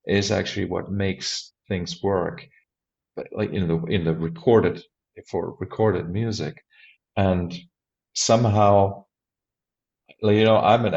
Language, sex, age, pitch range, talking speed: English, male, 40-59, 100-120 Hz, 120 wpm